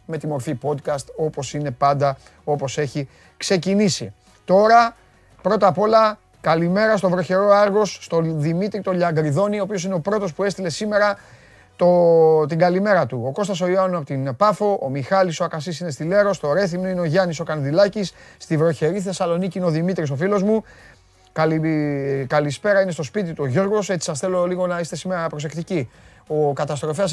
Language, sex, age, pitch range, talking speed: Greek, male, 30-49, 145-195 Hz, 175 wpm